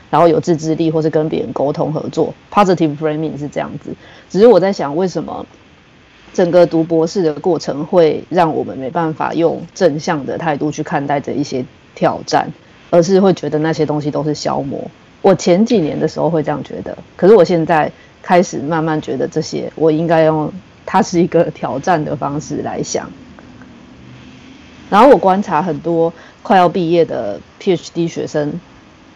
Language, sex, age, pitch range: Chinese, female, 30-49, 155-180 Hz